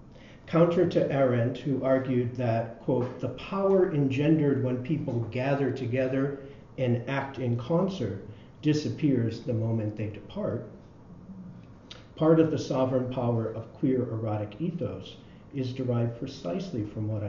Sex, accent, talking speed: male, American, 130 wpm